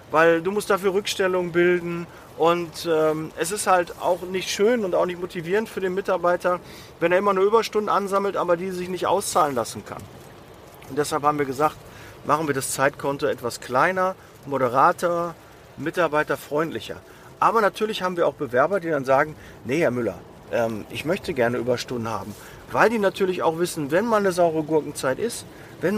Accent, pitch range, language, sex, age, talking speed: German, 150-200 Hz, German, male, 40-59, 180 wpm